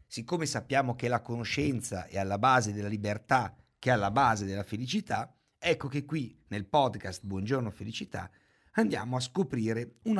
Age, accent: 50-69, native